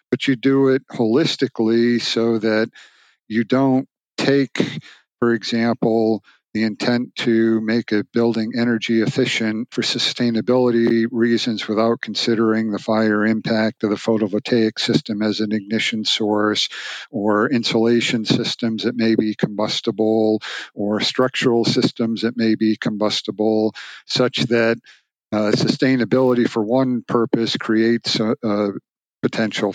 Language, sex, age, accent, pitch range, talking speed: English, male, 50-69, American, 110-120 Hz, 125 wpm